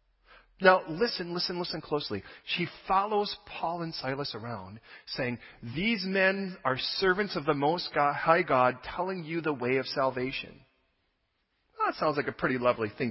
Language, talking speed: English, 155 wpm